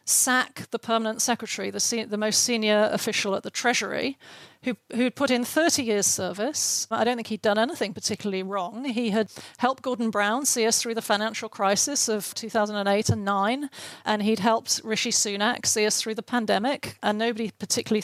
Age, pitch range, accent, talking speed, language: 40-59, 210-245 Hz, British, 175 wpm, English